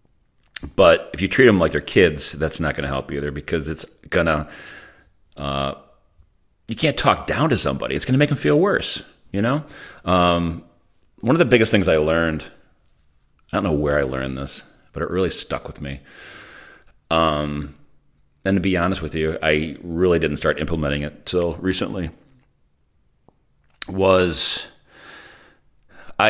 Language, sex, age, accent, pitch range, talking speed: English, male, 40-59, American, 75-95 Hz, 170 wpm